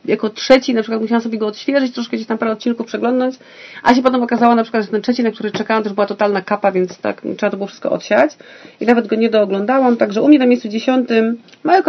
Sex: female